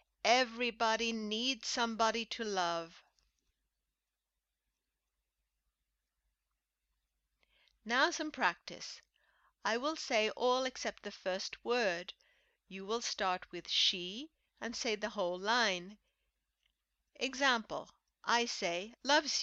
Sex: female